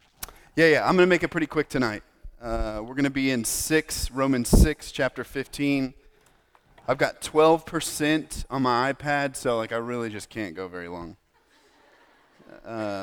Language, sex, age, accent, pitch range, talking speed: English, male, 30-49, American, 110-150 Hz, 170 wpm